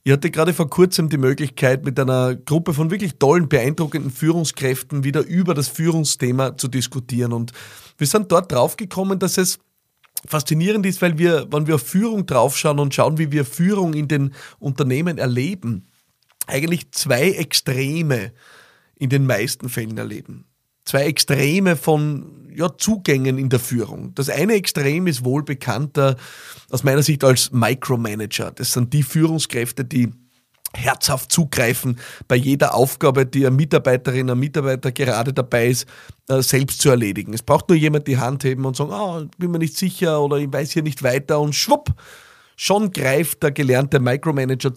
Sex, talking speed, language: male, 165 wpm, German